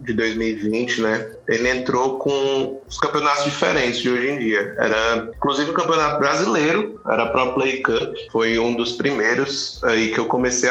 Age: 20-39